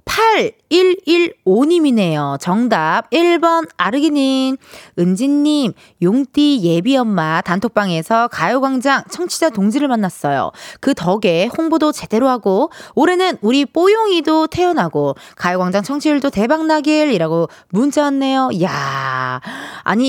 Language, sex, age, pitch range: Korean, female, 20-39, 195-325 Hz